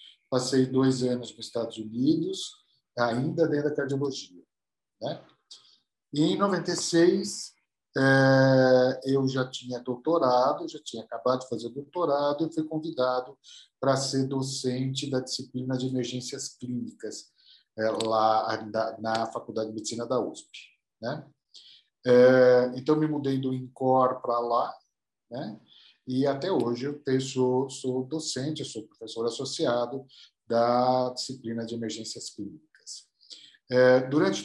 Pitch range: 120-140 Hz